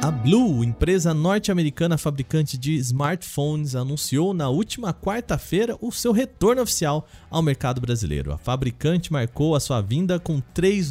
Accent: Brazilian